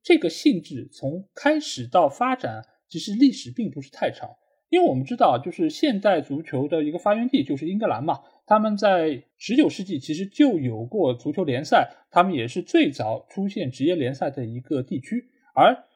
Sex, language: male, Chinese